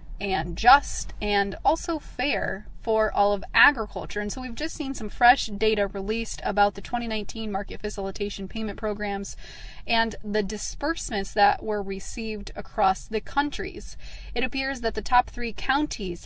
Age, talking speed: 20-39, 150 wpm